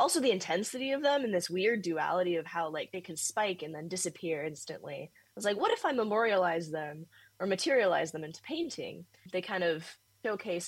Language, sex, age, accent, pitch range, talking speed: English, female, 10-29, American, 160-205 Hz, 200 wpm